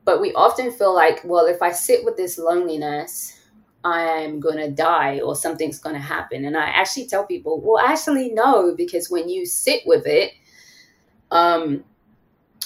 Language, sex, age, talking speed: English, female, 20-39, 170 wpm